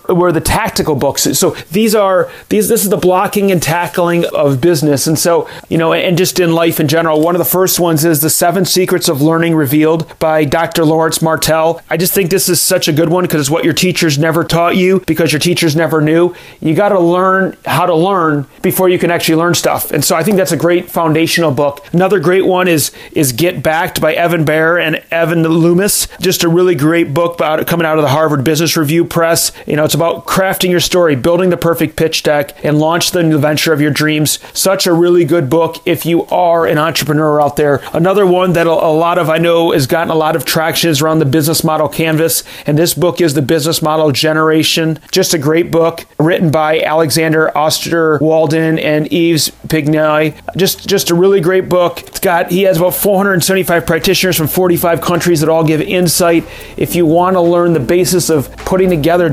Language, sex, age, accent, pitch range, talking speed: English, male, 30-49, American, 155-175 Hz, 220 wpm